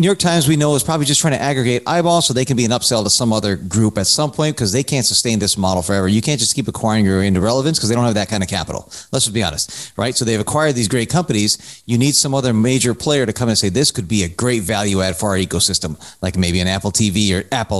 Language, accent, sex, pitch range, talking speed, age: English, American, male, 105-140 Hz, 285 wpm, 30-49